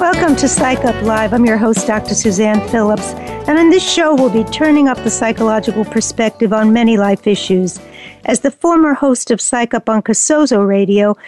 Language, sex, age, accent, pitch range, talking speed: English, female, 50-69, American, 220-295 Hz, 190 wpm